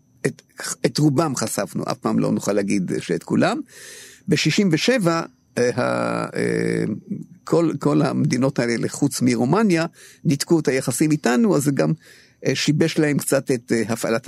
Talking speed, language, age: 135 wpm, Hebrew, 50-69